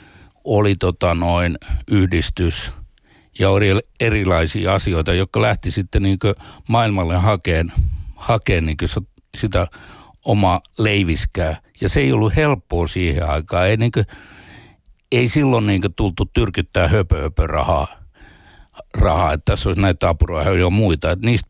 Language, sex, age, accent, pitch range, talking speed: Finnish, male, 60-79, native, 85-110 Hz, 135 wpm